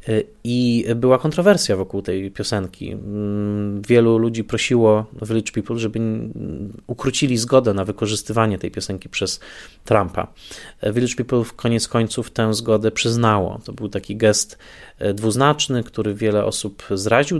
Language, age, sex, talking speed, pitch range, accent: Polish, 20-39, male, 130 wpm, 105-125 Hz, native